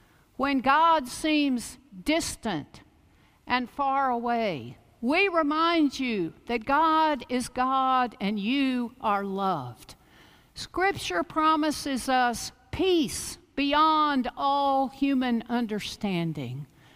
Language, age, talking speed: English, 60-79, 90 wpm